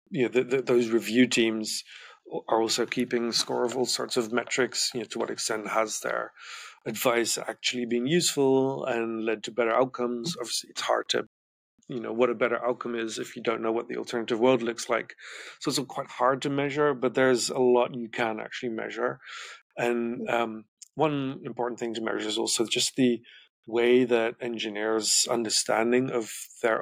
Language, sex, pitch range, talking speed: English, male, 115-130 Hz, 185 wpm